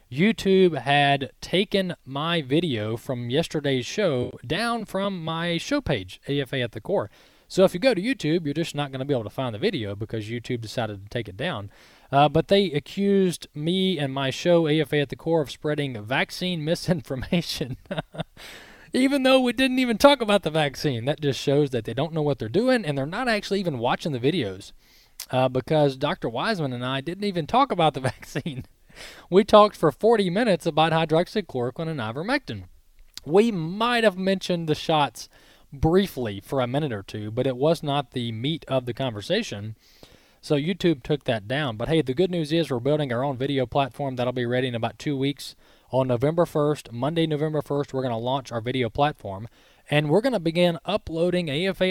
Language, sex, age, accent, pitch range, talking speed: English, male, 20-39, American, 130-175 Hz, 195 wpm